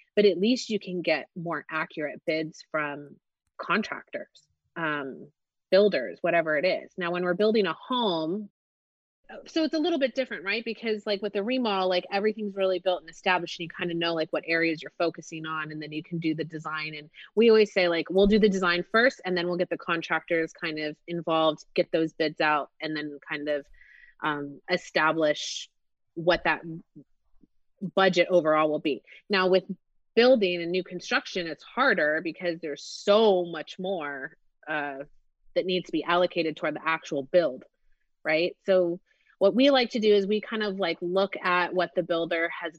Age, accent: 30-49, American